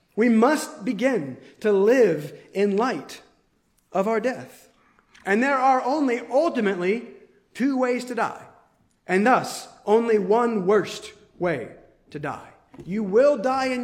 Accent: American